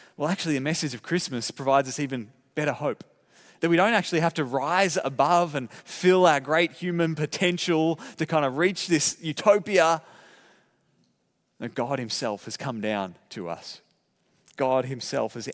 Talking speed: 160 wpm